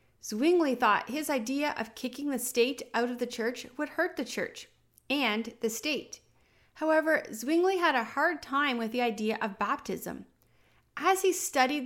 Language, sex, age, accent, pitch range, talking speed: English, female, 30-49, American, 230-295 Hz, 165 wpm